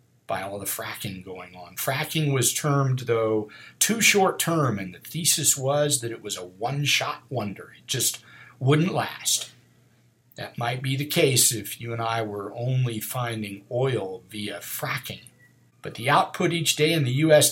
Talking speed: 175 wpm